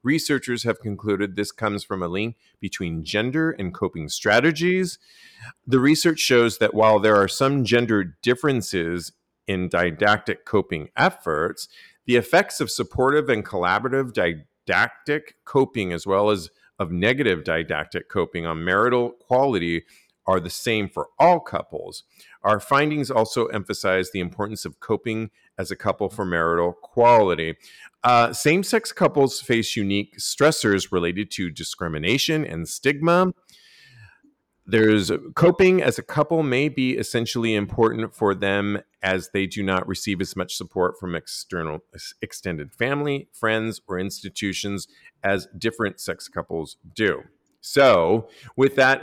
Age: 40-59